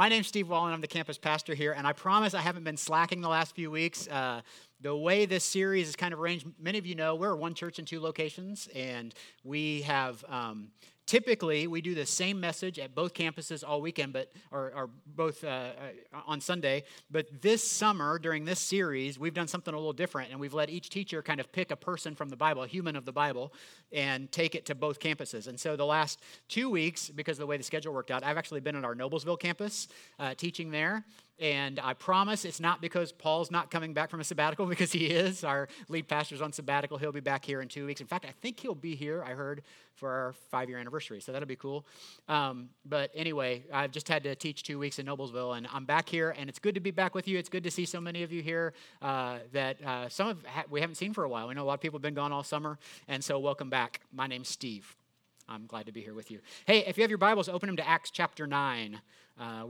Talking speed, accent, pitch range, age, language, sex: 250 wpm, American, 135-170 Hz, 50-69, English, male